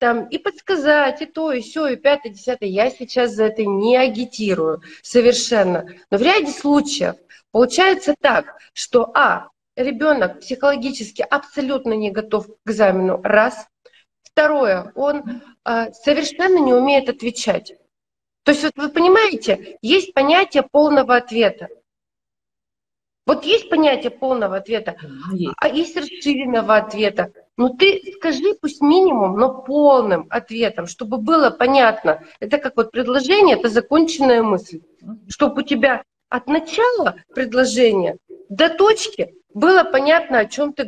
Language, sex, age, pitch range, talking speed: Russian, female, 30-49, 230-310 Hz, 130 wpm